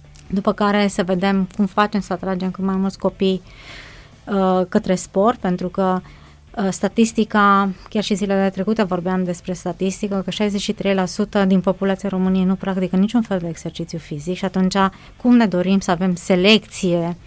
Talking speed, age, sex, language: 160 wpm, 20-39, female, Romanian